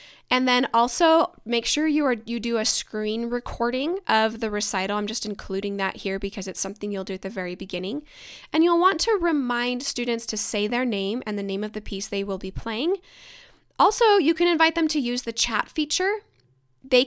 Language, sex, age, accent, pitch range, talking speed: English, female, 10-29, American, 210-295 Hz, 205 wpm